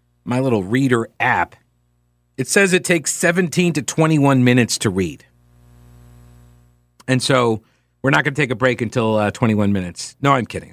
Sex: male